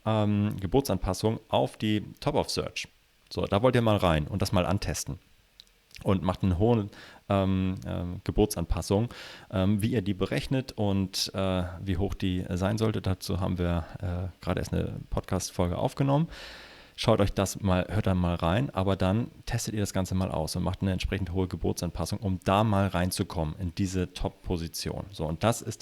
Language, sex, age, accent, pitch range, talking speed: German, male, 30-49, German, 90-110 Hz, 170 wpm